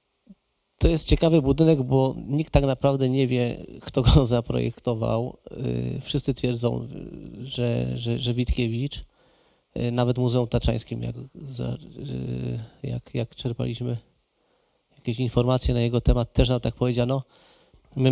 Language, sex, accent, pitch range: Polish, male, native, 115-130 Hz